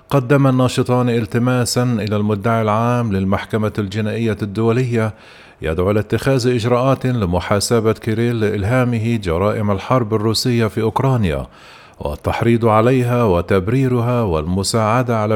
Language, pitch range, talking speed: Arabic, 105-120 Hz, 100 wpm